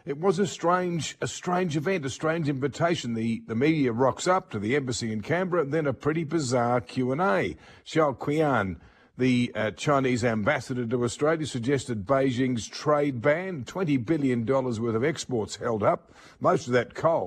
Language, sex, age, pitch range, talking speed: English, male, 50-69, 125-160 Hz, 180 wpm